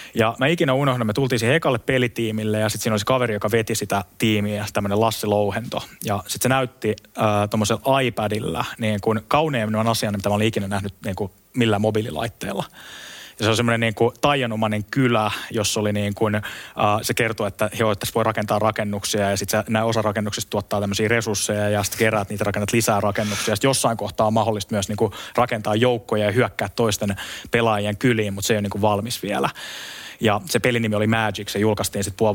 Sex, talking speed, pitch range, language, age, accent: male, 195 wpm, 105-120 Hz, Finnish, 20-39, native